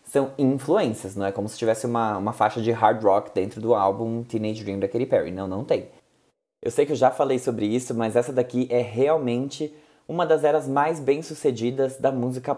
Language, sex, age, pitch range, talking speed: Portuguese, male, 20-39, 120-160 Hz, 210 wpm